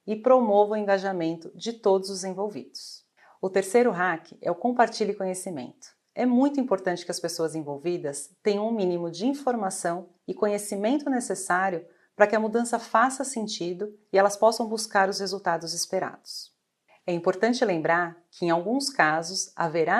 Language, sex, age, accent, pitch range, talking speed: Portuguese, female, 40-59, Brazilian, 175-220 Hz, 155 wpm